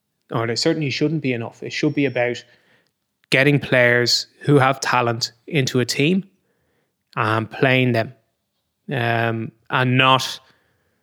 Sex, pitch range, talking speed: male, 120-135 Hz, 130 wpm